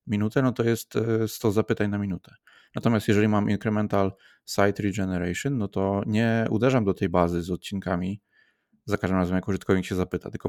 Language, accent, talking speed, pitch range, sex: Polish, native, 175 wpm, 95-110 Hz, male